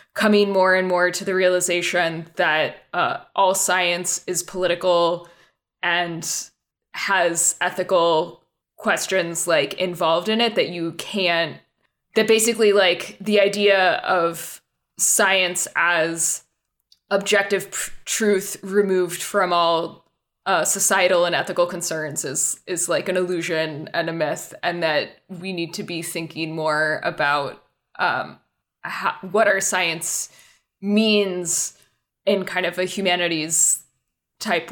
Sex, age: female, 20-39